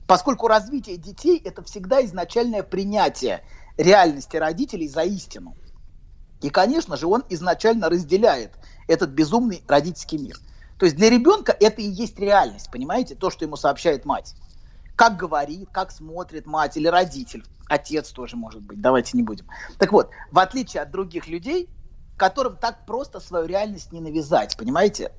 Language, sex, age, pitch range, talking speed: Russian, male, 30-49, 170-240 Hz, 150 wpm